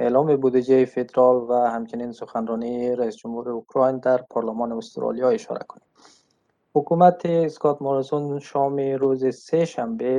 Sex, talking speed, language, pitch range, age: male, 125 wpm, Persian, 120-140 Hz, 20-39